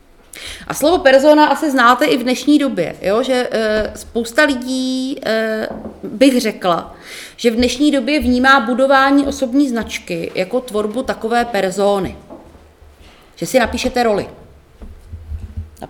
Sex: female